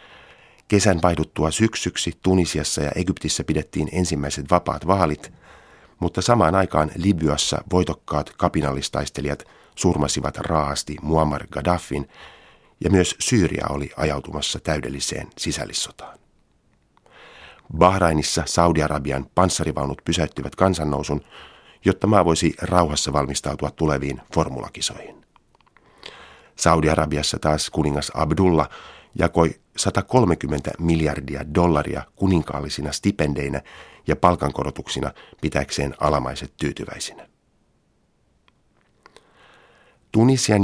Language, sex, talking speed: Finnish, male, 80 wpm